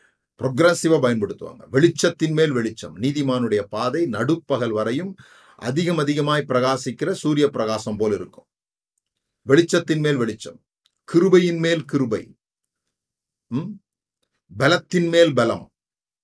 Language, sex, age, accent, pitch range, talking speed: Tamil, male, 40-59, native, 120-160 Hz, 60 wpm